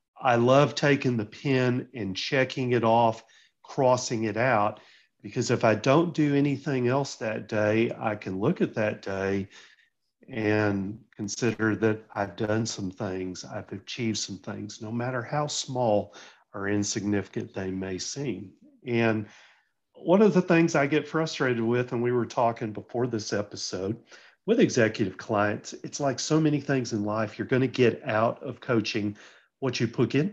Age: 40-59